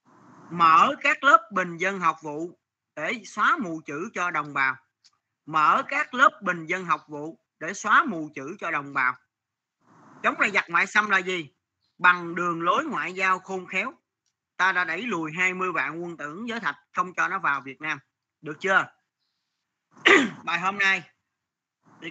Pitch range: 160-210 Hz